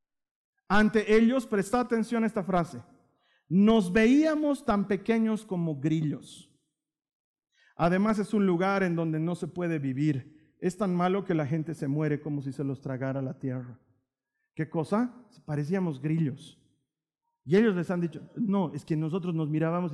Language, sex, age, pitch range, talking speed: Spanish, male, 50-69, 160-240 Hz, 160 wpm